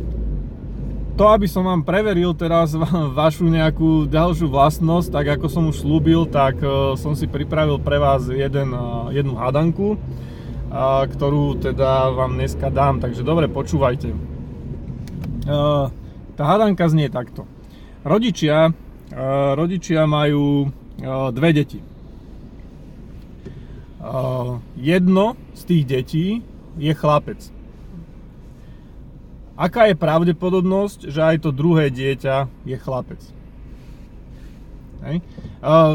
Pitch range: 135-165 Hz